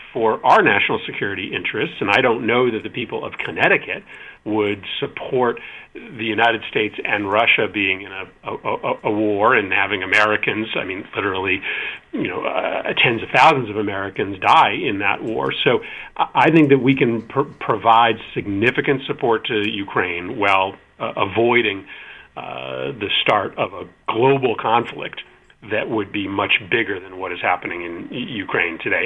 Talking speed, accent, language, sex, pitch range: 160 wpm, American, English, male, 110-145 Hz